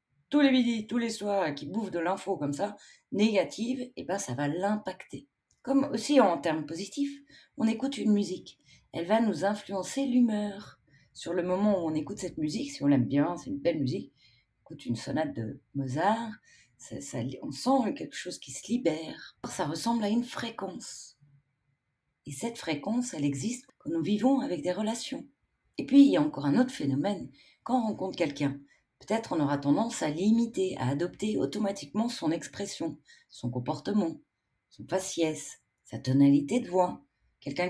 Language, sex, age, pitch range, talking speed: French, female, 40-59, 145-240 Hz, 180 wpm